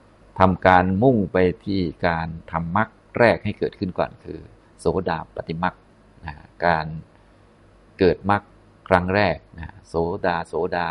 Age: 20-39